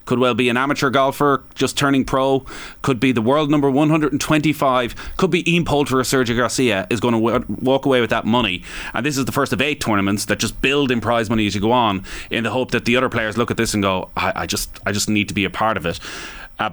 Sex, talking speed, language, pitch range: male, 265 wpm, English, 95-125 Hz